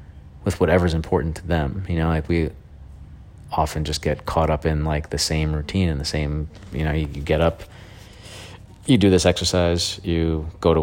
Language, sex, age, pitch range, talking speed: English, male, 30-49, 75-95 Hz, 195 wpm